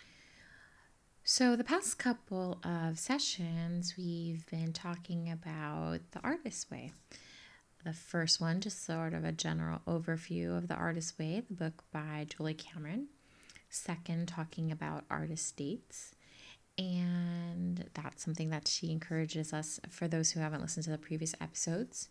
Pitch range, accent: 150-175 Hz, American